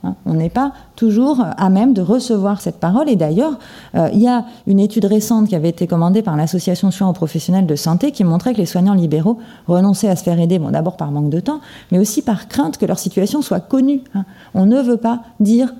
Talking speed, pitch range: 235 wpm, 185-235 Hz